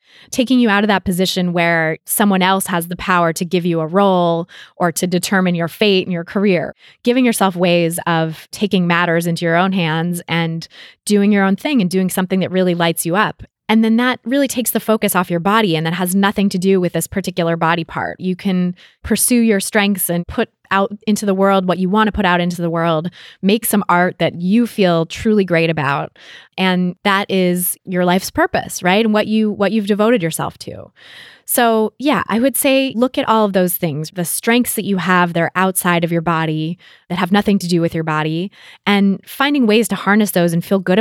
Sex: female